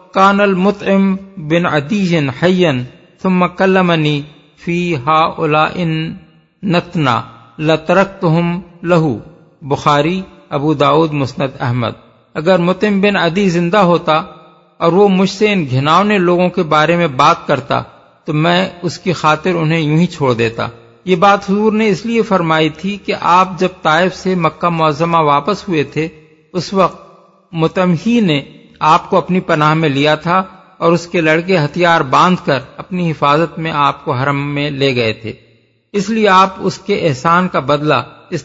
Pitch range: 155-190 Hz